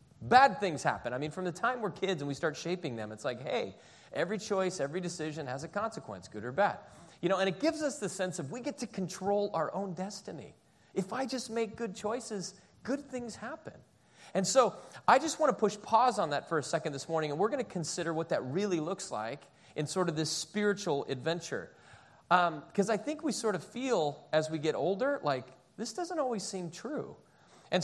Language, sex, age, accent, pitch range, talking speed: English, male, 30-49, American, 145-195 Hz, 220 wpm